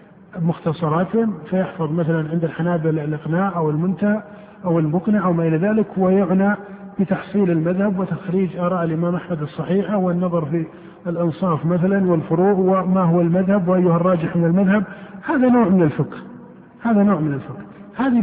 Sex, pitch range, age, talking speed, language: male, 175-210 Hz, 50-69, 140 wpm, Arabic